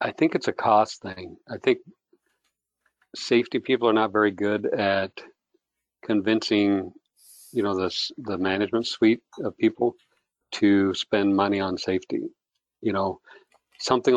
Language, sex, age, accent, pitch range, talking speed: English, male, 50-69, American, 95-105 Hz, 135 wpm